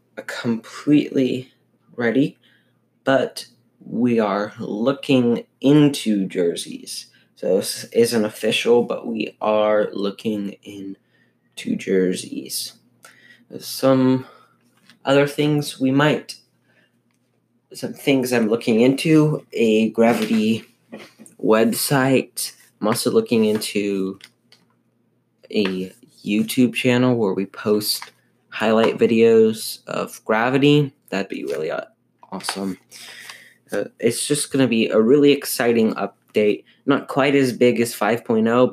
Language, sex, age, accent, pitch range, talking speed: English, male, 20-39, American, 110-140 Hz, 100 wpm